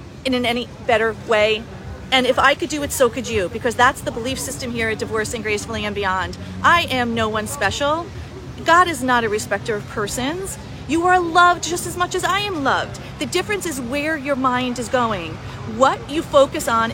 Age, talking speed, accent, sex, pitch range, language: 40-59, 210 wpm, American, female, 230-325 Hz, English